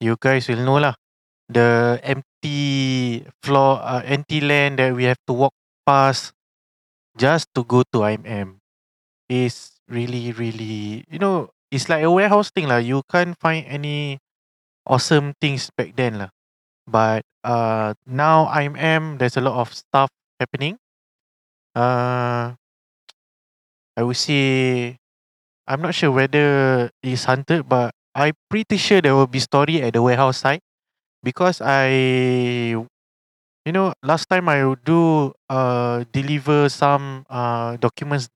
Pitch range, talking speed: 115-145 Hz, 135 wpm